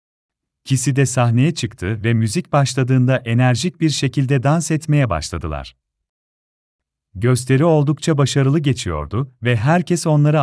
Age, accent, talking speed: 40-59, native, 115 wpm